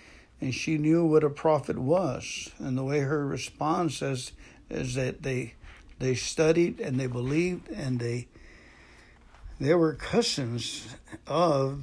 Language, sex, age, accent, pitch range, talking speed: English, male, 60-79, American, 135-190 Hz, 135 wpm